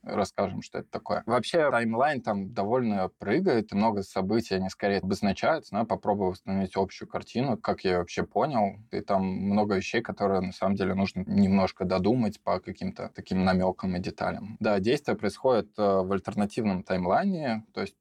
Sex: male